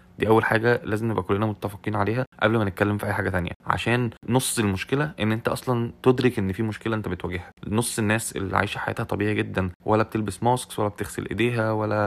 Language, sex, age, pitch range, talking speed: Arabic, male, 20-39, 100-115 Hz, 205 wpm